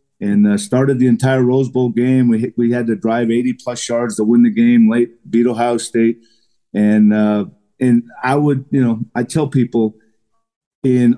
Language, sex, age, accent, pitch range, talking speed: English, male, 50-69, American, 110-140 Hz, 190 wpm